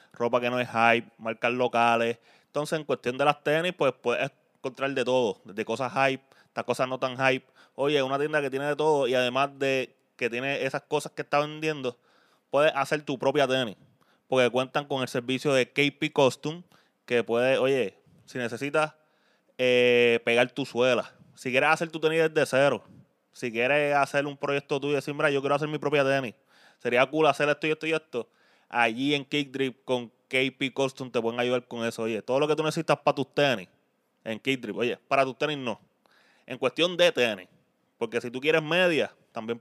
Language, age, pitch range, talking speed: Spanish, 20-39, 125-145 Hz, 200 wpm